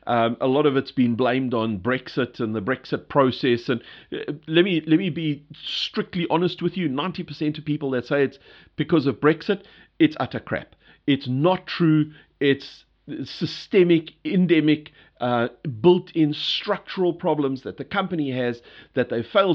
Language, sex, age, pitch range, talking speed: English, male, 40-59, 125-170 Hz, 160 wpm